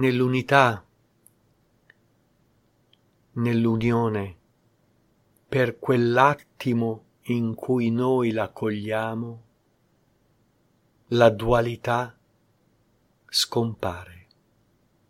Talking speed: 50 wpm